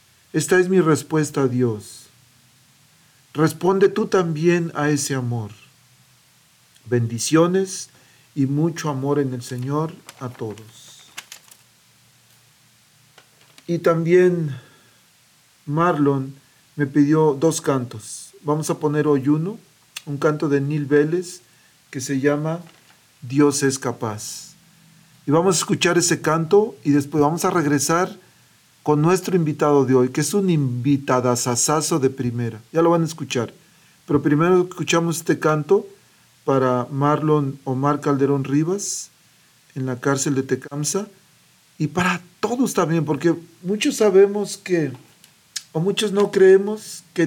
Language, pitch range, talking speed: Spanish, 135-175 Hz, 125 wpm